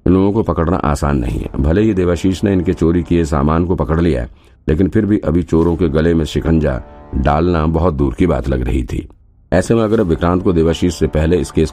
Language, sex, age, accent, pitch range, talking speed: Hindi, male, 50-69, native, 75-90 Hz, 235 wpm